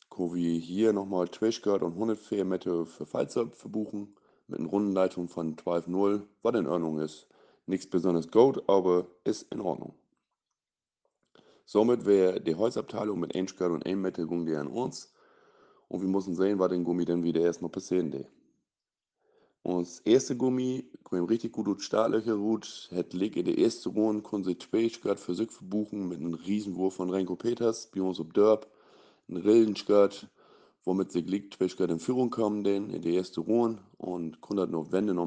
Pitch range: 90-110 Hz